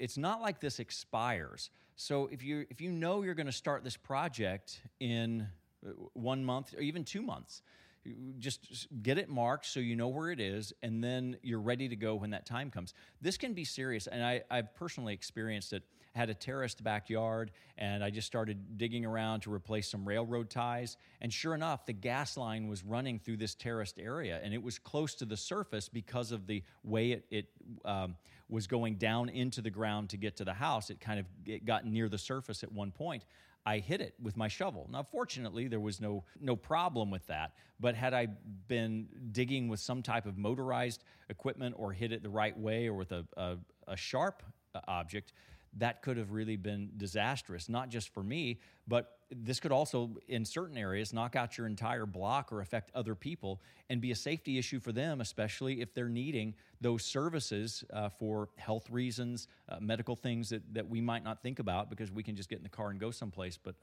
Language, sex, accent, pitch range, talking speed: English, male, American, 105-125 Hz, 210 wpm